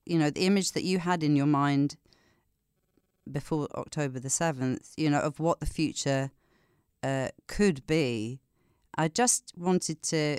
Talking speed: 155 wpm